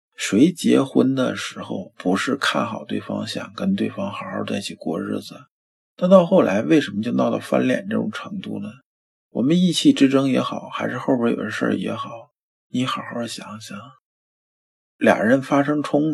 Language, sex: Chinese, male